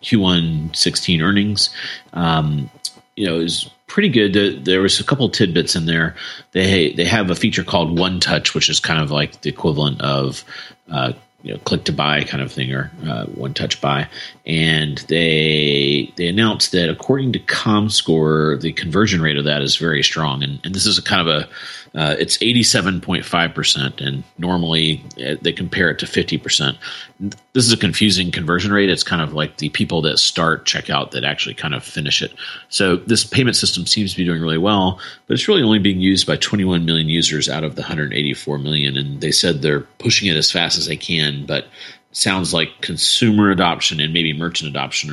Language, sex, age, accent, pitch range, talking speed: English, male, 40-59, American, 75-95 Hz, 200 wpm